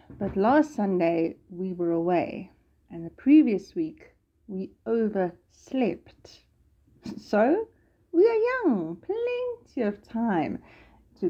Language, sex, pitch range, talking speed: English, female, 190-270 Hz, 105 wpm